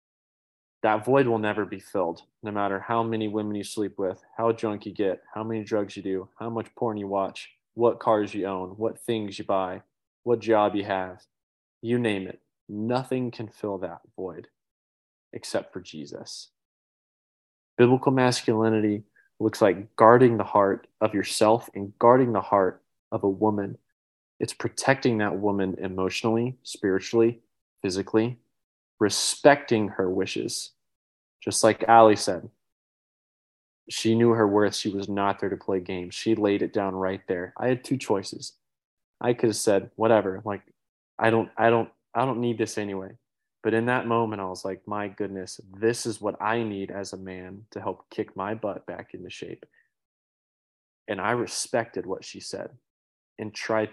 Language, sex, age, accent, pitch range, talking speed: English, male, 20-39, American, 95-115 Hz, 165 wpm